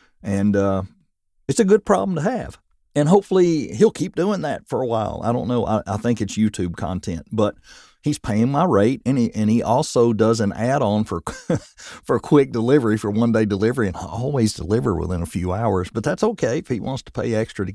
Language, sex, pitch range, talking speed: English, male, 100-130 Hz, 220 wpm